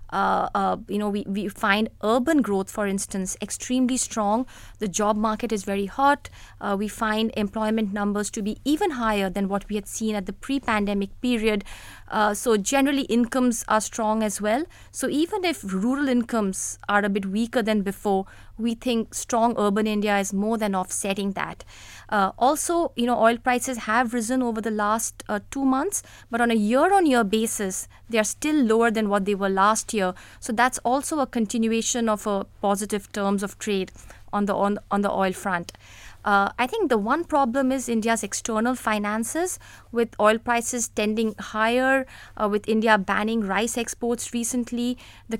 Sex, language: female, English